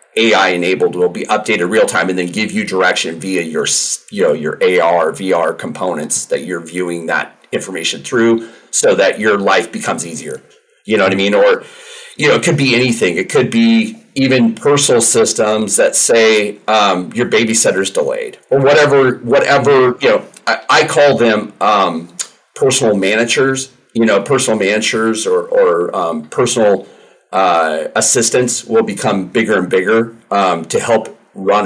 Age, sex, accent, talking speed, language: 40-59, male, American, 165 wpm, English